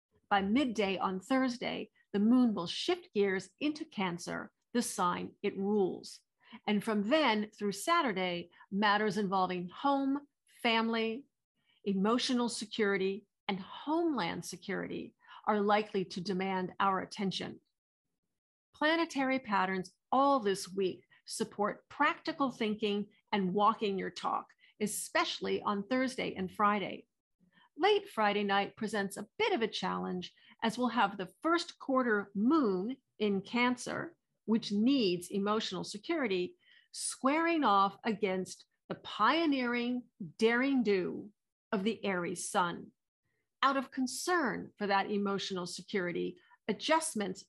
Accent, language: American, English